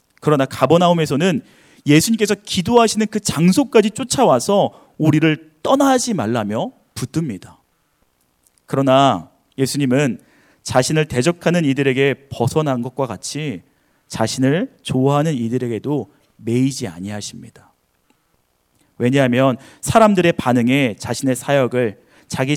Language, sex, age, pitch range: Korean, male, 30-49, 120-160 Hz